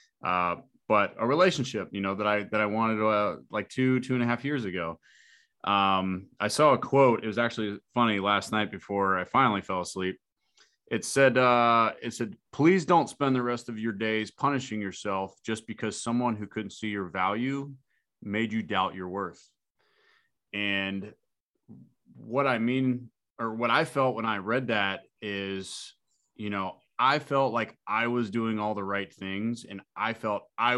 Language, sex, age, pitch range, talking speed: English, male, 30-49, 100-120 Hz, 180 wpm